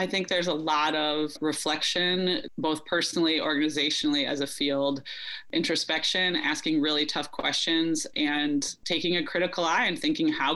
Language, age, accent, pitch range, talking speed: English, 20-39, American, 150-200 Hz, 150 wpm